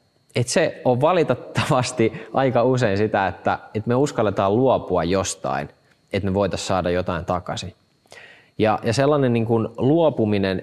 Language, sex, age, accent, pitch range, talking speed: Finnish, male, 20-39, native, 95-120 Hz, 140 wpm